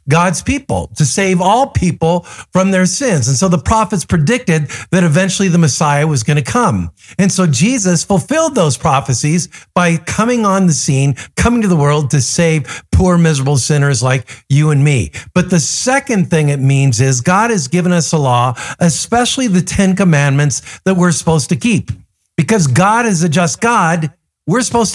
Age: 50-69